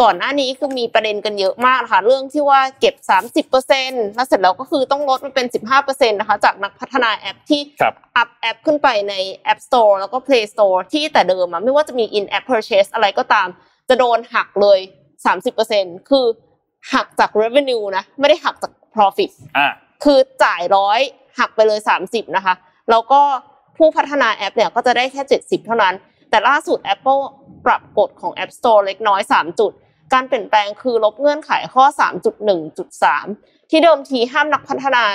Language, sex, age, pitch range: Thai, female, 20-39, 205-285 Hz